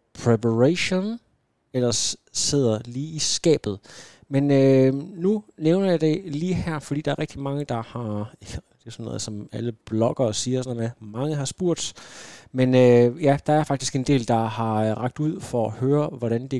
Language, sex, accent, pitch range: Danish, male, native, 115-150 Hz